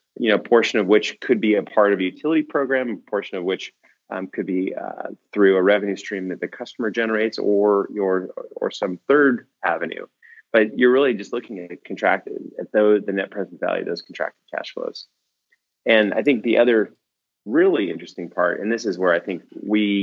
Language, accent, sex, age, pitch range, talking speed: English, American, male, 30-49, 90-110 Hz, 200 wpm